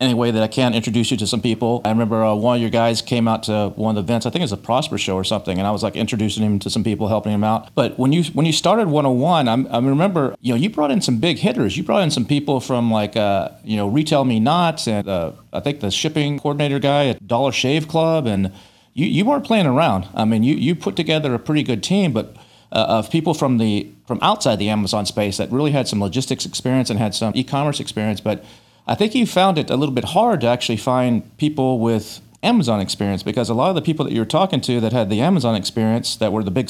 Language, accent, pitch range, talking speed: English, American, 110-145 Hz, 265 wpm